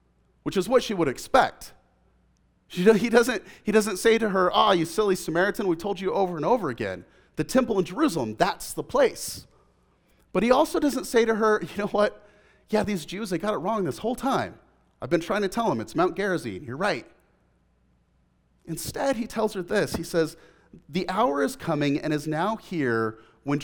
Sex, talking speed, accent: male, 205 wpm, American